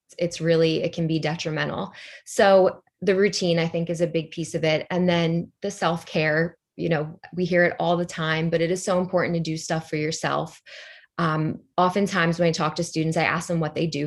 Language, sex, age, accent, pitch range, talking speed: English, female, 20-39, American, 160-175 Hz, 220 wpm